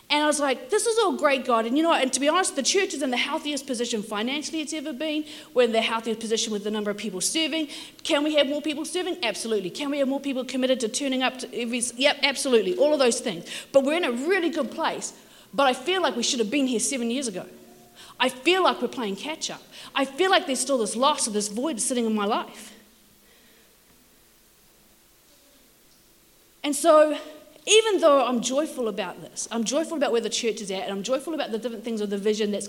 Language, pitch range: English, 210-295 Hz